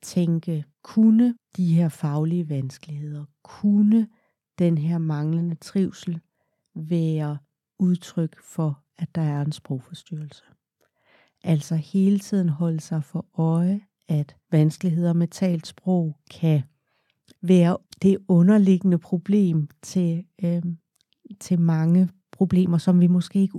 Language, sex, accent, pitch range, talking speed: Danish, female, native, 155-180 Hz, 110 wpm